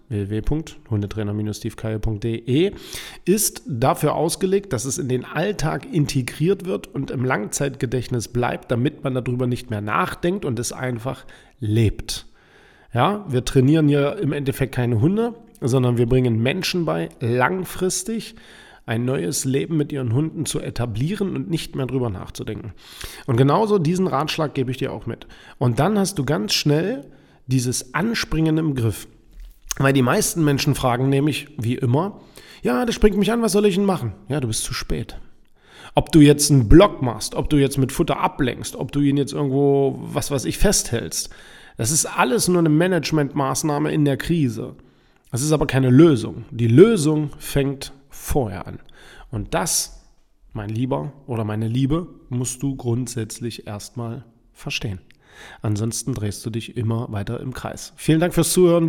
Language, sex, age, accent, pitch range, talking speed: German, male, 40-59, German, 120-155 Hz, 160 wpm